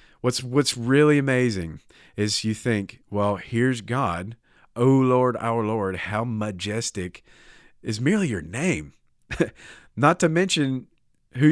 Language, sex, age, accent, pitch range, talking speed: English, male, 40-59, American, 95-120 Hz, 125 wpm